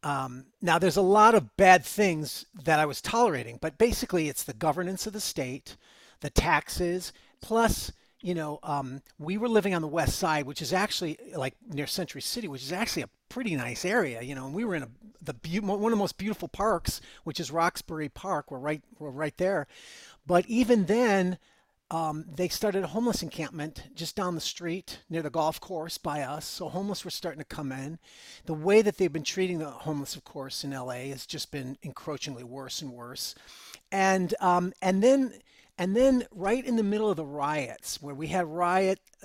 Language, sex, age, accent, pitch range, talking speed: English, male, 40-59, American, 150-200 Hz, 205 wpm